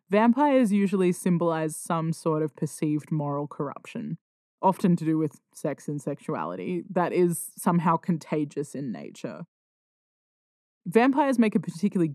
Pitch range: 160-195 Hz